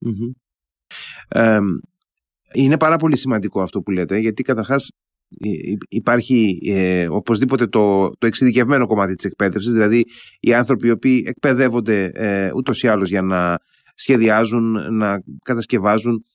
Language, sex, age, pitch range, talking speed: Greek, male, 30-49, 105-135 Hz, 125 wpm